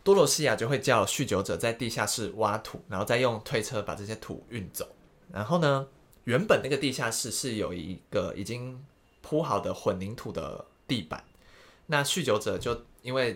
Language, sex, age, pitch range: Chinese, male, 20-39, 100-135 Hz